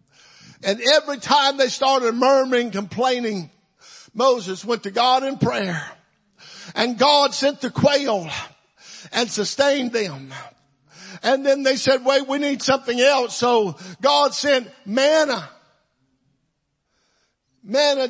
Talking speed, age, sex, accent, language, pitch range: 115 wpm, 50-69, male, American, English, 205-260 Hz